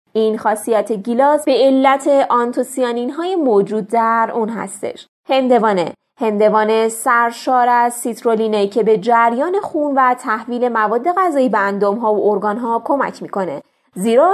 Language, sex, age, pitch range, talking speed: Persian, female, 20-39, 210-265 Hz, 135 wpm